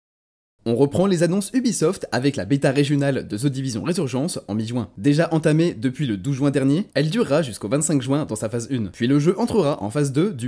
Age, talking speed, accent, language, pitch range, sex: 20-39, 225 wpm, French, French, 130-175 Hz, male